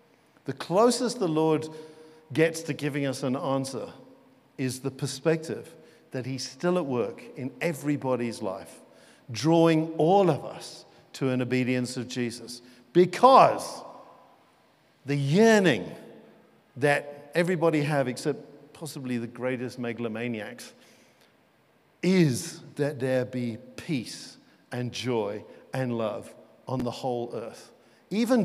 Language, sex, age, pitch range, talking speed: English, male, 50-69, 125-180 Hz, 115 wpm